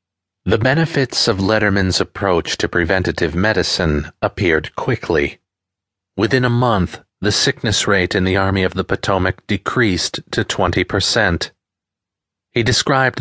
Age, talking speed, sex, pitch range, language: 40-59, 125 wpm, male, 95-115 Hz, English